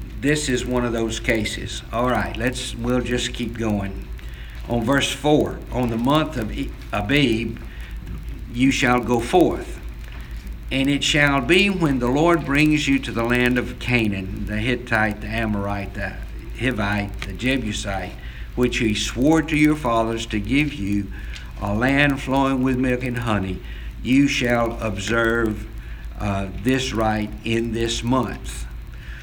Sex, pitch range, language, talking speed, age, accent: male, 105-130 Hz, English, 150 wpm, 60-79, American